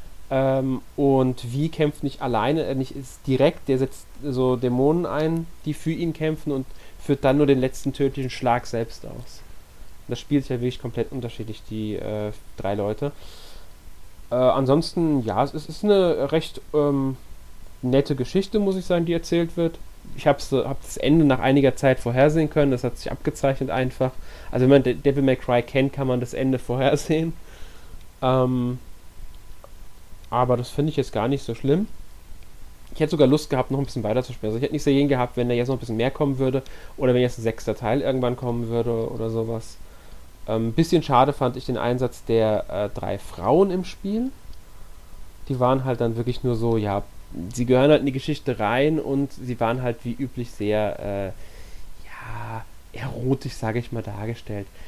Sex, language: male, German